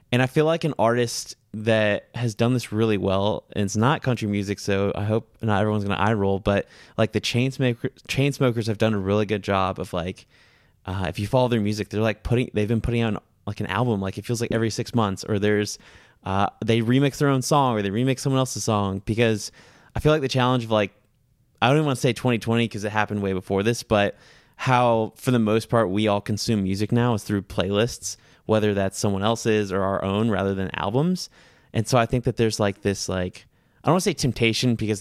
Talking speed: 235 wpm